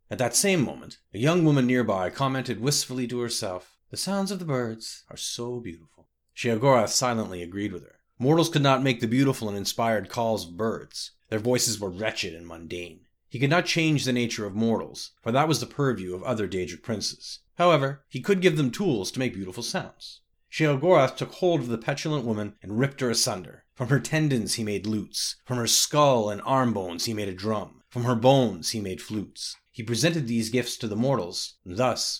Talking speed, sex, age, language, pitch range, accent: 205 wpm, male, 30-49, English, 105-135 Hz, American